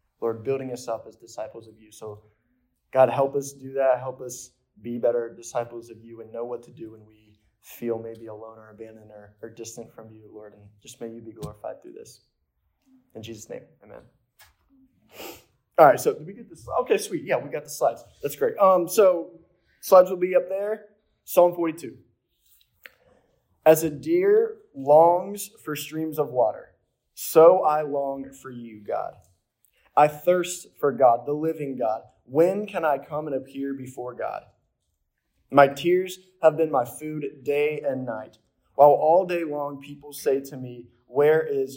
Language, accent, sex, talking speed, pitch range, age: English, American, male, 180 wpm, 115-160 Hz, 20-39